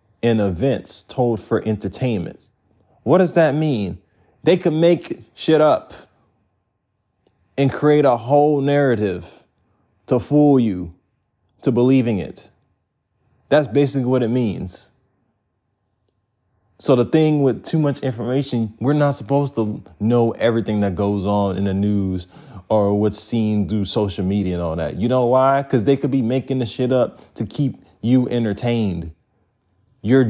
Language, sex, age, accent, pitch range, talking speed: English, male, 30-49, American, 105-130 Hz, 145 wpm